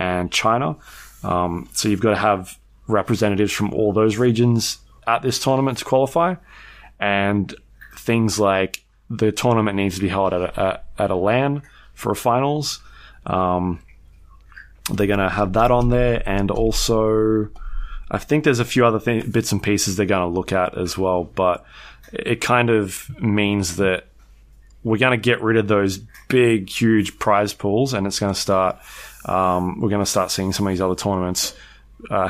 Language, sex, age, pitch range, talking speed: English, male, 20-39, 95-115 Hz, 175 wpm